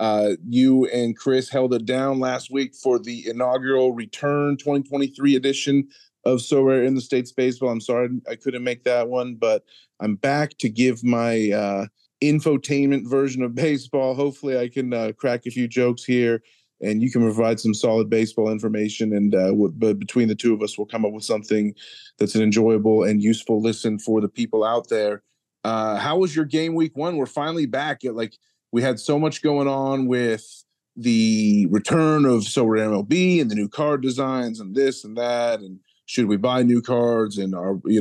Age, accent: 30-49, American